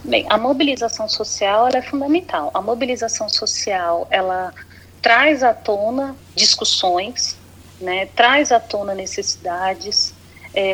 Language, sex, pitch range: Portuguese, female, 200-255 Hz